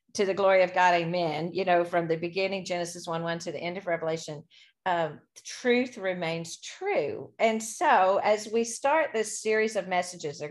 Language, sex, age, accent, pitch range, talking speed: English, female, 40-59, American, 170-215 Hz, 195 wpm